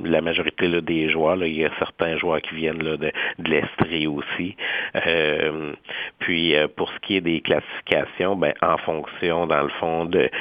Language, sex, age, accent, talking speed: French, male, 50-69, Canadian, 190 wpm